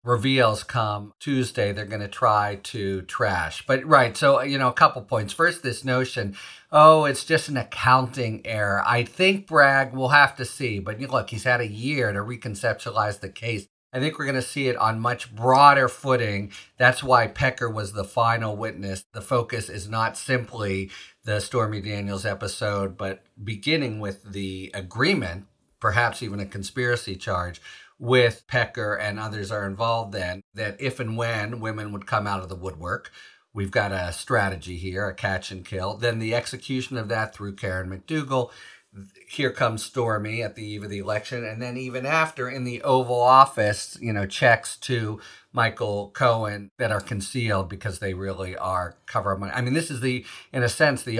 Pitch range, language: 100-125 Hz, English